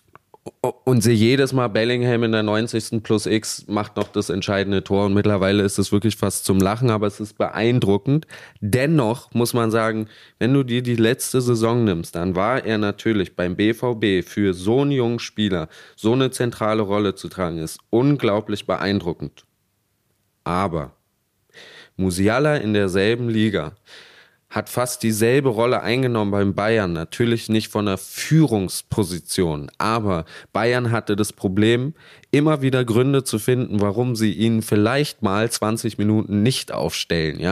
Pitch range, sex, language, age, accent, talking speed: 100-120 Hz, male, German, 20-39, German, 150 wpm